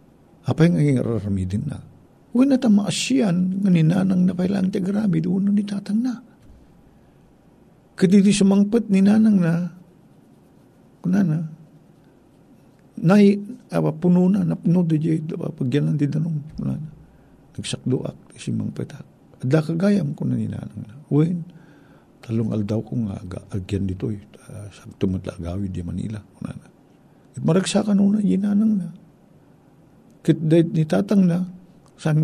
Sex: male